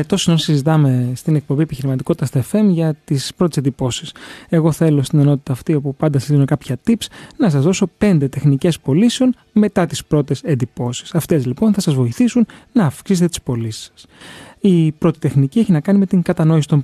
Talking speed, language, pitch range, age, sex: 190 wpm, Greek, 135-175 Hz, 20-39, male